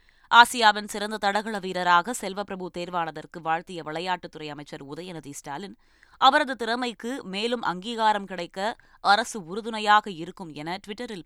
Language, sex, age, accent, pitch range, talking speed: Tamil, female, 20-39, native, 165-215 Hz, 110 wpm